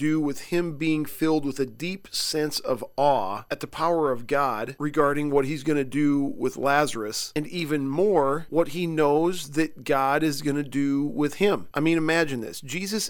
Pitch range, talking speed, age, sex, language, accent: 140-165 Hz, 195 wpm, 40-59, male, English, American